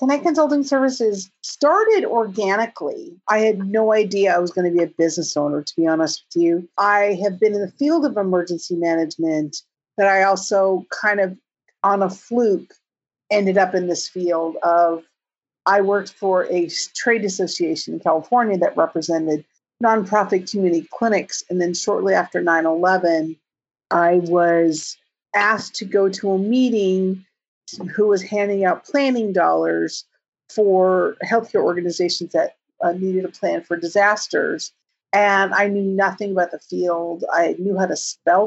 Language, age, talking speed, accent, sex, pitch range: English, 50-69, 155 wpm, American, female, 175-210 Hz